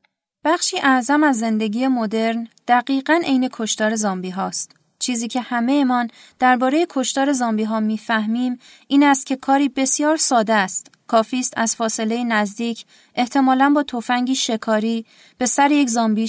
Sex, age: female, 30-49